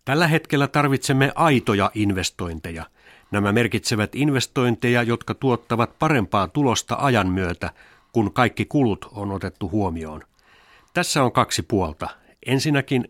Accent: native